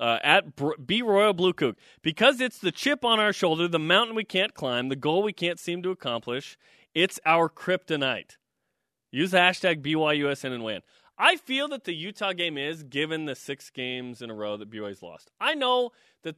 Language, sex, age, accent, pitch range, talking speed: English, male, 30-49, American, 130-195 Hz, 200 wpm